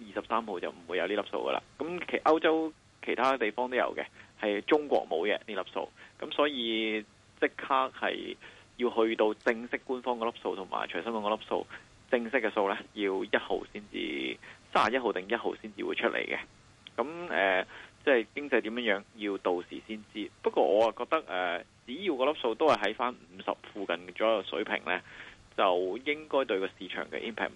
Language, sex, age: Chinese, male, 20-39